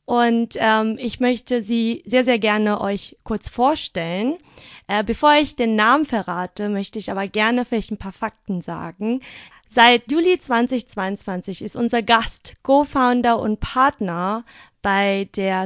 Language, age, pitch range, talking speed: German, 20-39, 200-240 Hz, 140 wpm